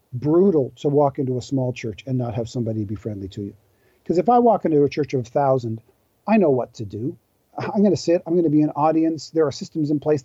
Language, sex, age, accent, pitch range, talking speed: English, male, 40-59, American, 130-170 Hz, 265 wpm